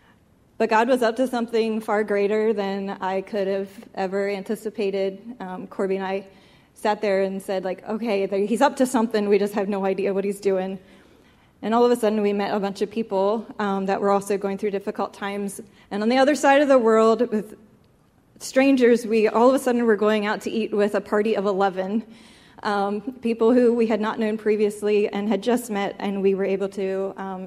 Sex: female